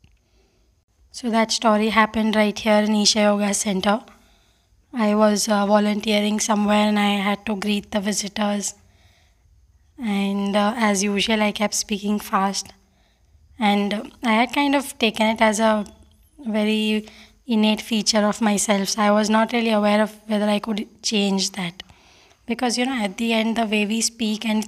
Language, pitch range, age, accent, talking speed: English, 205-220 Hz, 20-39, Indian, 165 wpm